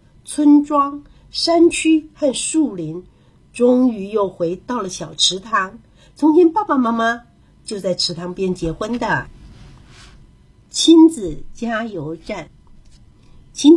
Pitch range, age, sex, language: 175-275 Hz, 50-69, female, Chinese